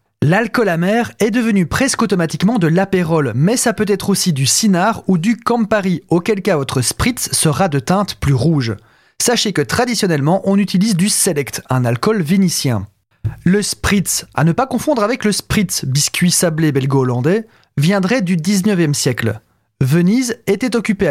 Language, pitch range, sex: French, 140-200 Hz, male